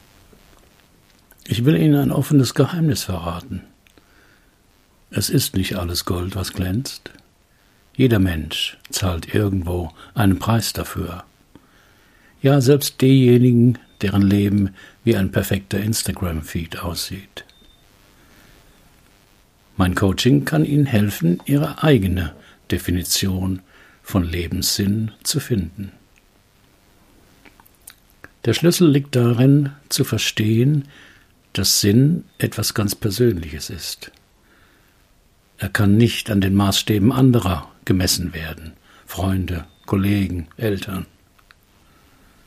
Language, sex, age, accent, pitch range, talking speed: German, male, 60-79, German, 90-120 Hz, 95 wpm